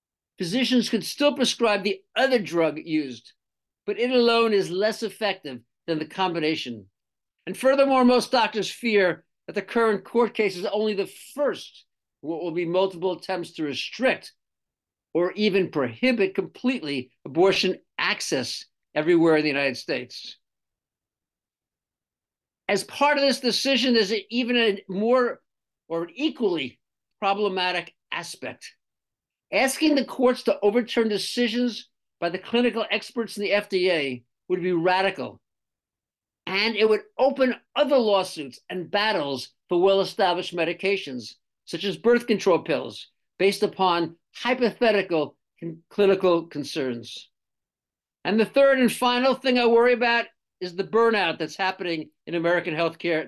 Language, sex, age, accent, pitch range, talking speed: English, male, 50-69, American, 170-235 Hz, 135 wpm